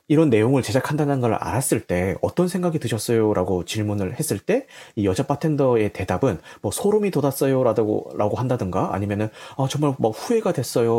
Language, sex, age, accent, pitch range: Korean, male, 30-49, native, 105-150 Hz